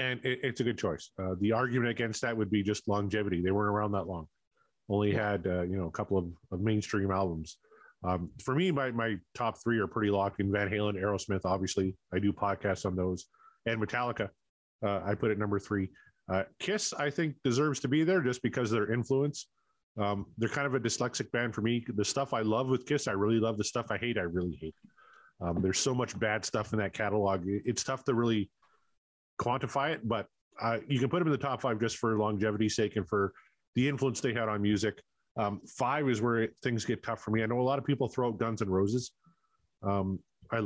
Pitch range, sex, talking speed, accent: 100-130 Hz, male, 230 wpm, American